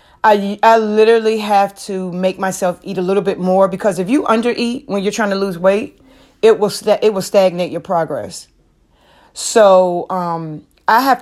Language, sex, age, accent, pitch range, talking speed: English, female, 30-49, American, 175-210 Hz, 185 wpm